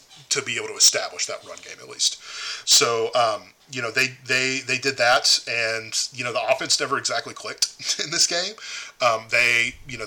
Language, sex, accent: English, male, American